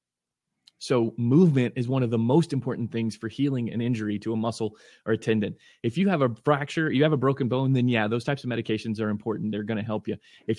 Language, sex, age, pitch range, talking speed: English, male, 20-39, 110-130 Hz, 245 wpm